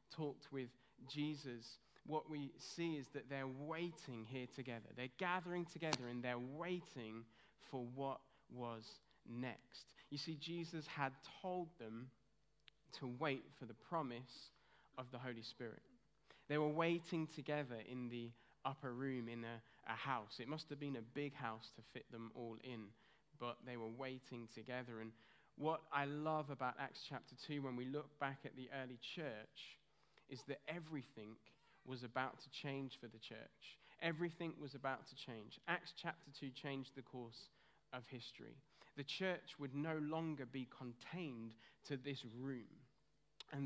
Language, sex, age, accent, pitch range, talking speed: English, male, 20-39, British, 120-150 Hz, 160 wpm